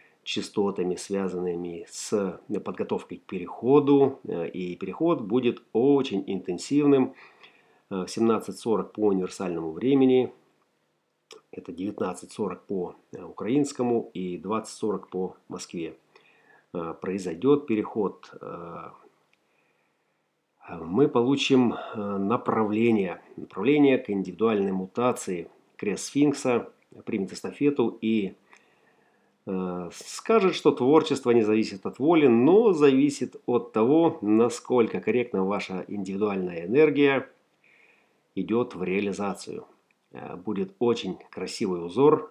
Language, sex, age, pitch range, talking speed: Russian, male, 40-59, 95-135 Hz, 85 wpm